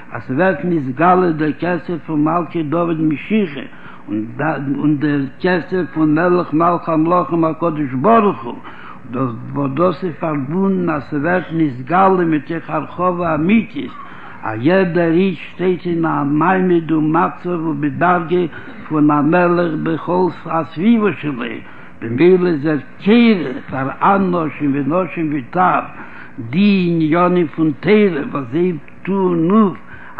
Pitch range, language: 150-180 Hz, Hebrew